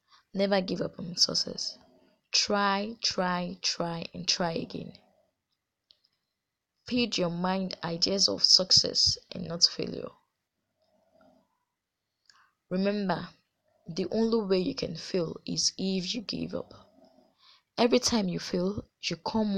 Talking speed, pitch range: 115 wpm, 180-220 Hz